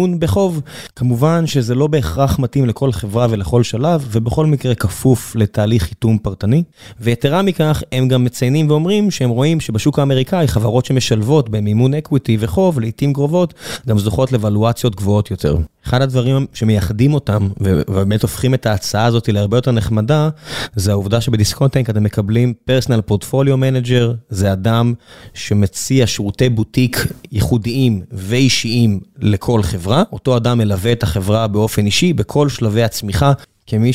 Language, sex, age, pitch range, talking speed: Hebrew, male, 20-39, 110-130 Hz, 140 wpm